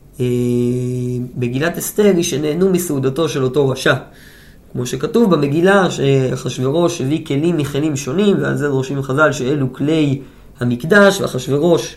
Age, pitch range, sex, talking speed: 20-39, 135-185 Hz, male, 125 wpm